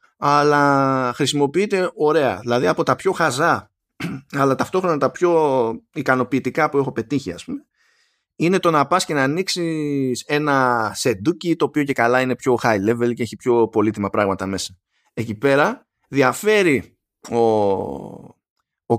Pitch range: 120-170 Hz